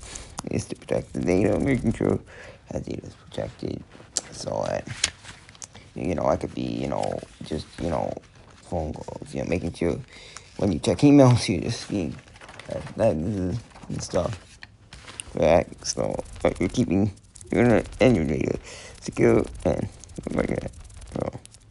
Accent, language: American, English